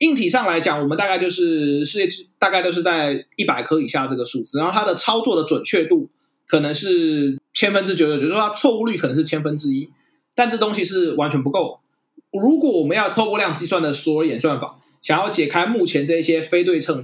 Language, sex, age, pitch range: Chinese, male, 20-39, 155-230 Hz